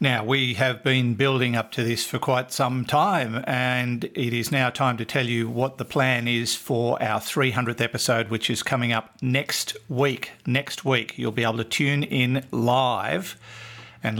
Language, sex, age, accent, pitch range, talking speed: English, male, 50-69, Australian, 110-135 Hz, 185 wpm